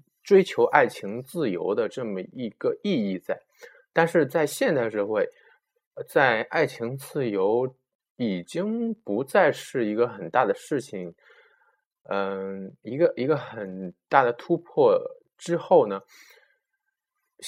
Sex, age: male, 20-39